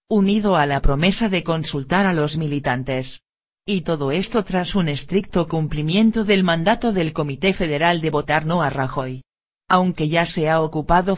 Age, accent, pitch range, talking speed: 50-69, Spanish, 145-185 Hz, 165 wpm